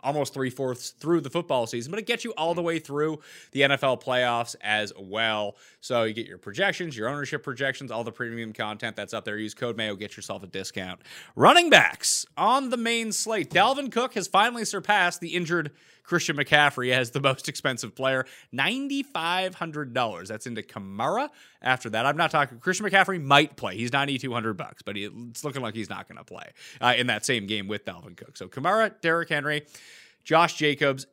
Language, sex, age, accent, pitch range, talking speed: English, male, 30-49, American, 115-155 Hz, 205 wpm